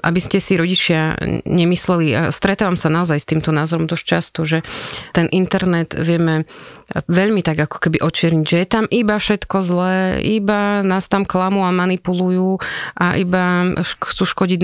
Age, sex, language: 30-49, female, Slovak